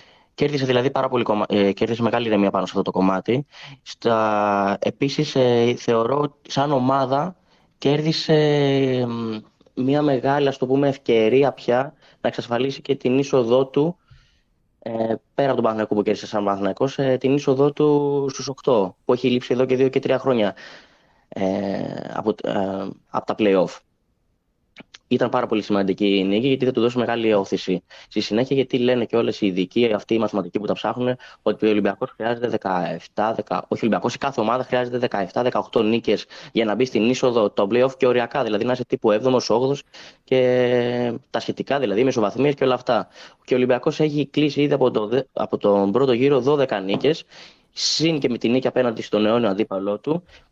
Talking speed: 170 wpm